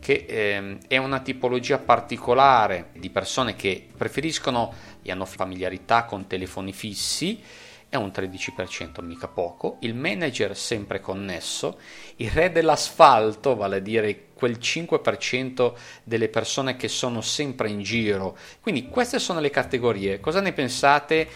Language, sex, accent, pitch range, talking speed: Italian, male, native, 95-135 Hz, 130 wpm